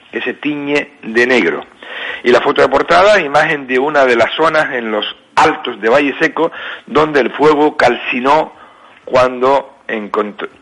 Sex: male